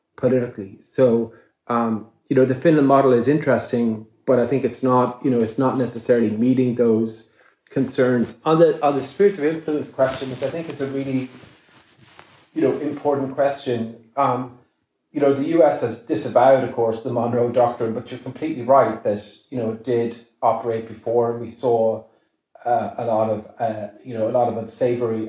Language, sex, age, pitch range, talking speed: English, male, 30-49, 115-130 Hz, 185 wpm